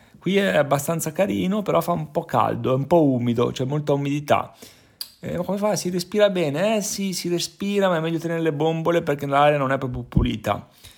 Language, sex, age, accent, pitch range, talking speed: Italian, male, 30-49, native, 125-170 Hz, 210 wpm